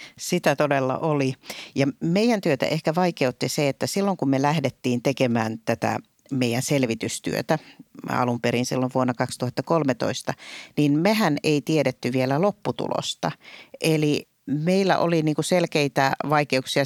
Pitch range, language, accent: 130-150 Hz, Finnish, native